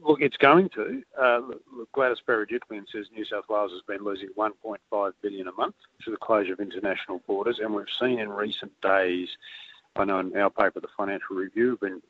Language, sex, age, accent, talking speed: English, male, 50-69, Australian, 200 wpm